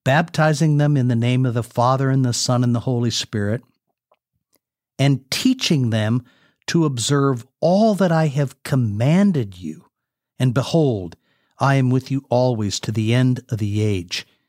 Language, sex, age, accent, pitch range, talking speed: English, male, 50-69, American, 120-150 Hz, 160 wpm